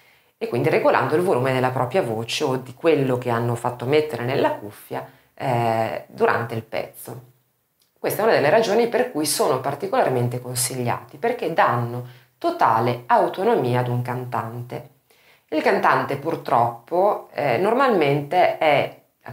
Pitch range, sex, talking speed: 125-145 Hz, female, 140 wpm